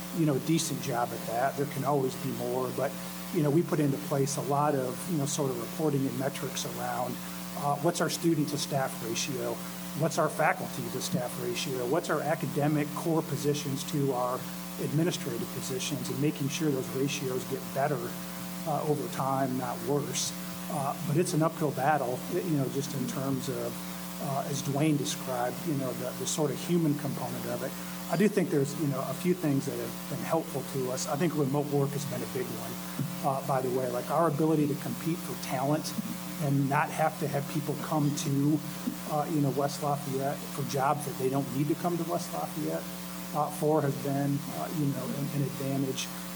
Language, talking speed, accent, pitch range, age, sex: English, 205 wpm, American, 130-155 Hz, 40-59, male